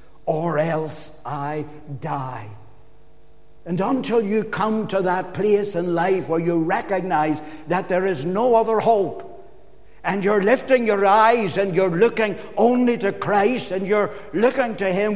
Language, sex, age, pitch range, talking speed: English, male, 60-79, 145-180 Hz, 150 wpm